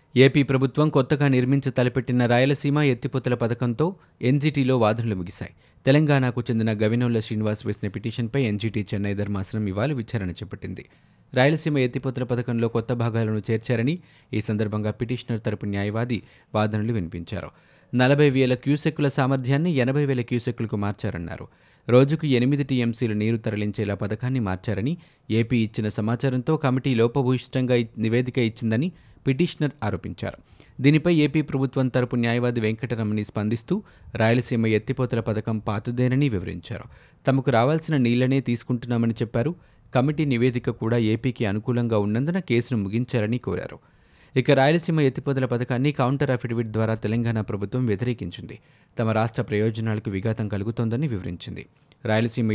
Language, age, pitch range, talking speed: Telugu, 30-49, 110-135 Hz, 120 wpm